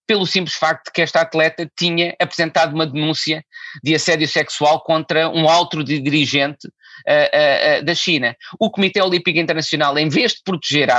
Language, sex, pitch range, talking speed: Portuguese, male, 135-175 Hz, 170 wpm